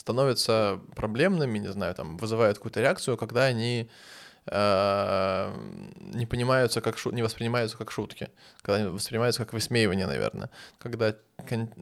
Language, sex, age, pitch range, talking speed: Russian, male, 20-39, 105-125 Hz, 130 wpm